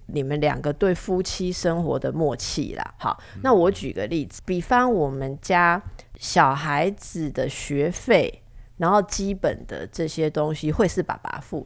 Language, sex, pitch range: Chinese, female, 150-190 Hz